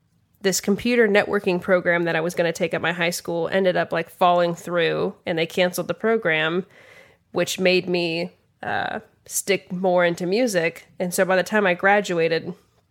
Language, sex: English, female